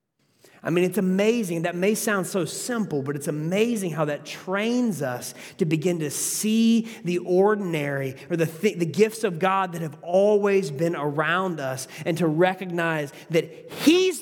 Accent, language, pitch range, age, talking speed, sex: American, English, 130-175 Hz, 30-49, 170 wpm, male